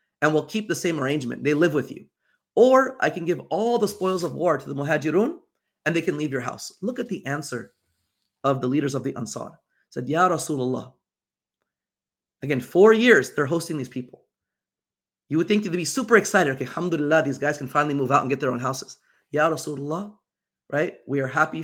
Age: 30-49